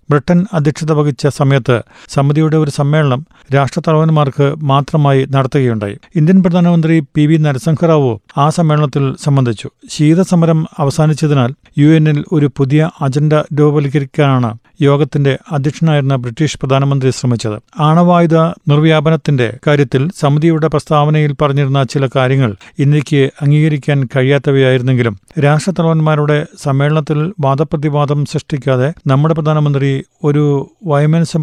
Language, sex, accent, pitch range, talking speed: Malayalam, male, native, 140-155 Hz, 95 wpm